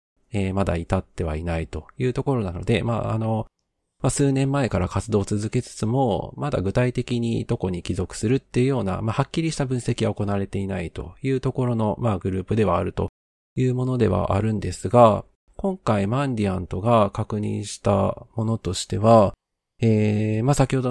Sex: male